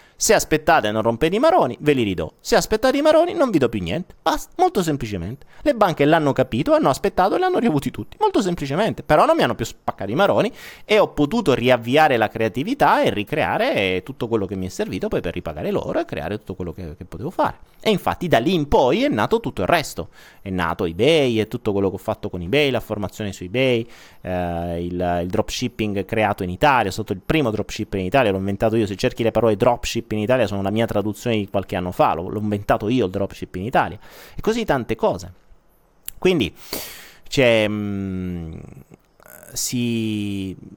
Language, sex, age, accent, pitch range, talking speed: Italian, male, 30-49, native, 100-140 Hz, 210 wpm